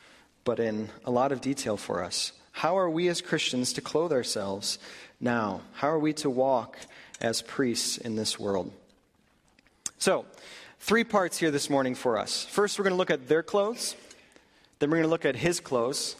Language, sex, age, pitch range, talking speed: English, male, 30-49, 125-170 Hz, 190 wpm